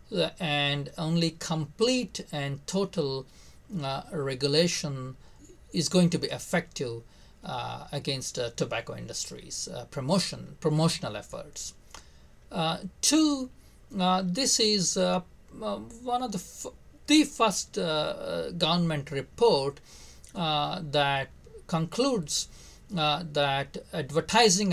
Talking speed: 100 wpm